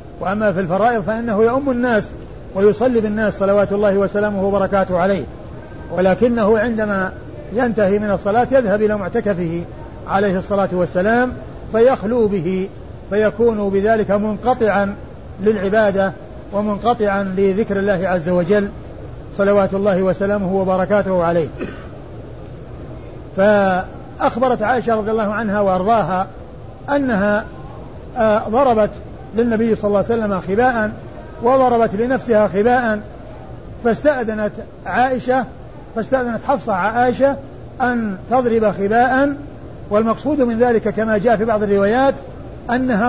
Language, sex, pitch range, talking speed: Arabic, male, 195-240 Hz, 105 wpm